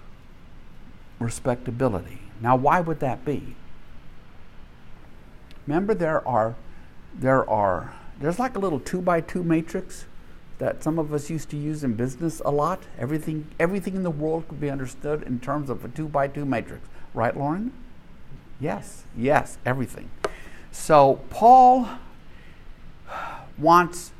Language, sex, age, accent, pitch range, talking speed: English, male, 60-79, American, 125-170 Hz, 135 wpm